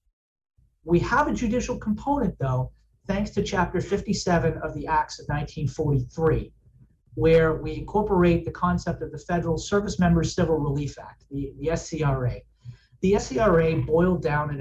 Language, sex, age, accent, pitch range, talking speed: English, male, 40-59, American, 140-180 Hz, 150 wpm